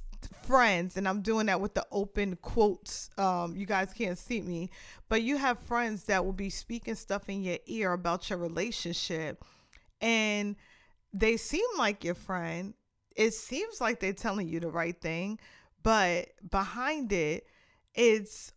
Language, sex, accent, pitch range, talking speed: English, female, American, 190-235 Hz, 160 wpm